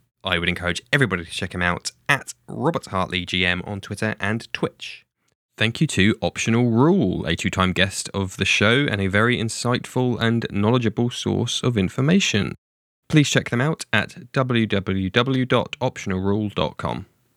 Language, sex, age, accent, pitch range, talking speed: English, male, 10-29, British, 90-125 Hz, 145 wpm